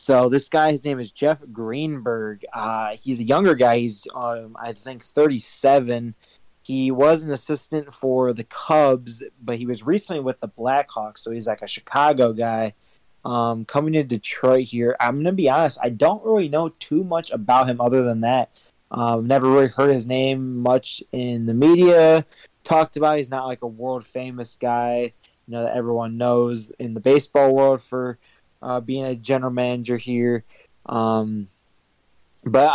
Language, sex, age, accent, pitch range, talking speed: English, male, 20-39, American, 115-140 Hz, 175 wpm